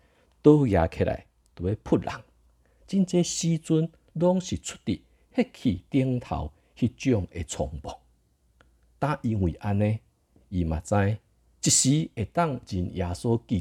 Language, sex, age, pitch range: Chinese, male, 50-69, 80-120 Hz